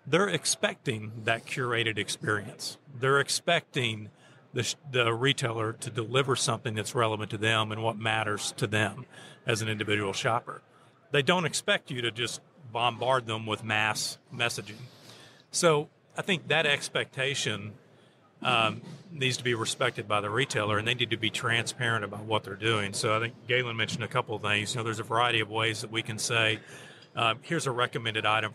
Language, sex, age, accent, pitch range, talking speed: English, male, 40-59, American, 110-135 Hz, 175 wpm